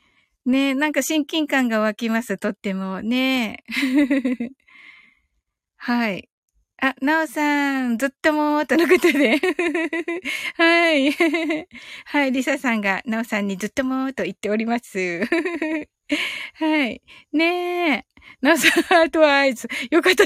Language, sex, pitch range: Japanese, female, 205-300 Hz